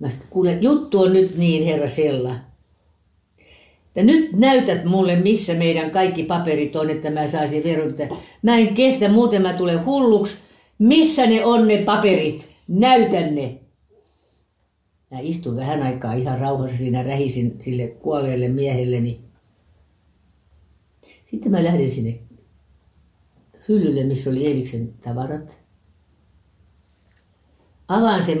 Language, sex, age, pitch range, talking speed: Finnish, female, 60-79, 120-185 Hz, 120 wpm